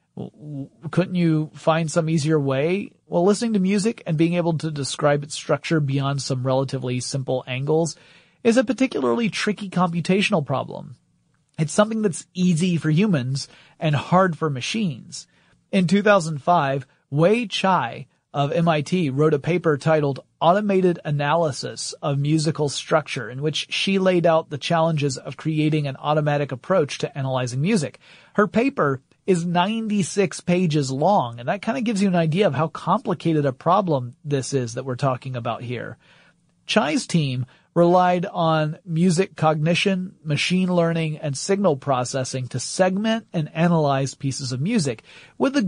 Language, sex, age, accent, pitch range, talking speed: English, male, 30-49, American, 140-180 Hz, 150 wpm